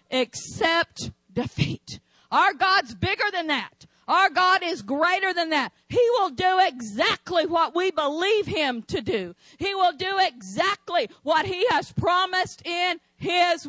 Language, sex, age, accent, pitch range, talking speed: English, female, 50-69, American, 290-345 Hz, 145 wpm